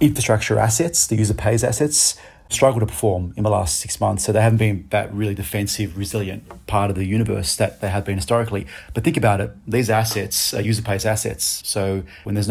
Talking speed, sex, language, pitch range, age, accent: 210 wpm, male, English, 100-110 Hz, 30-49, Australian